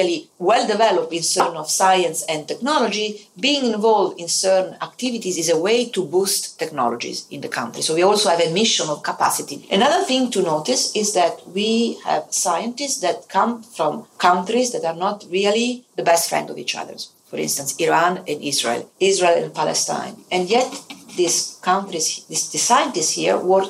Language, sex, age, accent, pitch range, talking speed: Italian, female, 40-59, native, 165-205 Hz, 175 wpm